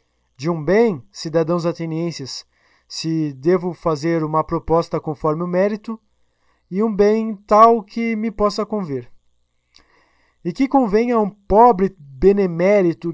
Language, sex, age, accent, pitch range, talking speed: Portuguese, male, 20-39, Brazilian, 155-215 Hz, 125 wpm